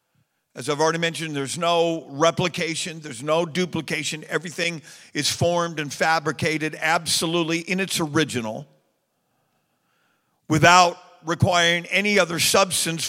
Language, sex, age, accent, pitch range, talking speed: English, male, 50-69, American, 145-175 Hz, 110 wpm